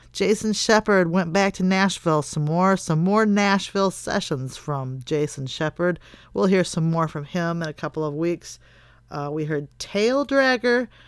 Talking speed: 170 wpm